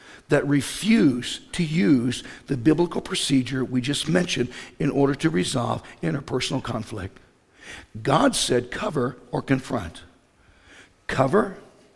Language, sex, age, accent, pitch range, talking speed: English, male, 60-79, American, 125-160 Hz, 110 wpm